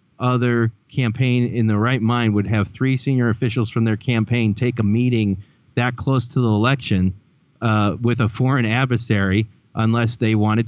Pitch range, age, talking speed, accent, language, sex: 105-125 Hz, 30-49, 170 wpm, American, English, male